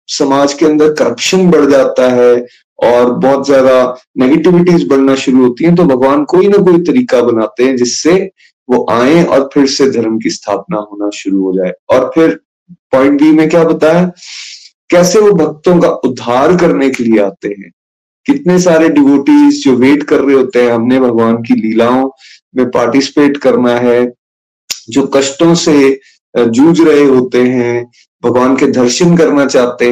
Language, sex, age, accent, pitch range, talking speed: Hindi, male, 30-49, native, 120-160 Hz, 165 wpm